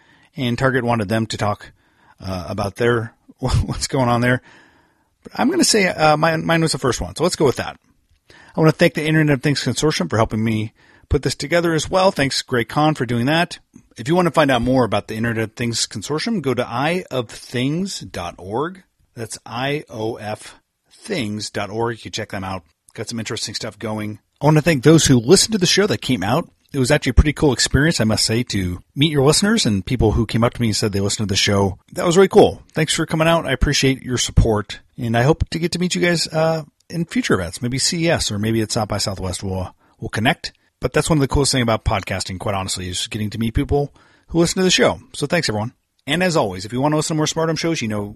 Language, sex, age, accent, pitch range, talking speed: English, male, 40-59, American, 110-155 Hz, 245 wpm